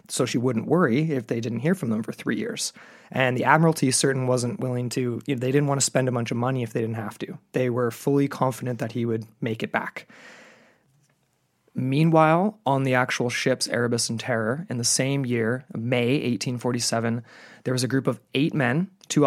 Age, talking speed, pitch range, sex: 20-39, 210 wpm, 120-135 Hz, male